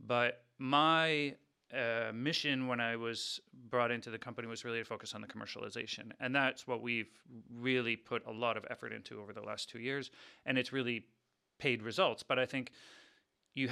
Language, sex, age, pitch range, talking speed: English, male, 30-49, 115-130 Hz, 190 wpm